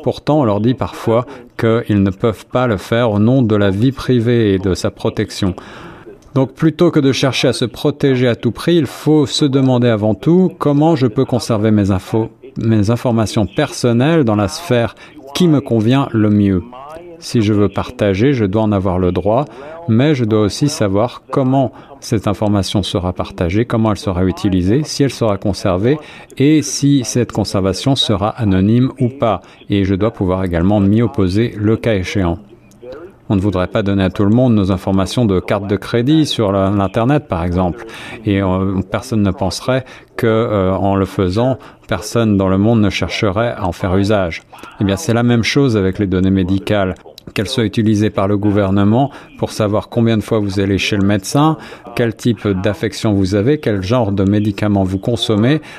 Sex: male